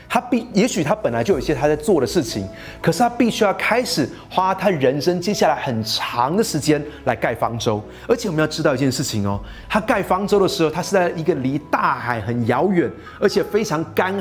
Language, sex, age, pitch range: Chinese, male, 30-49, 135-220 Hz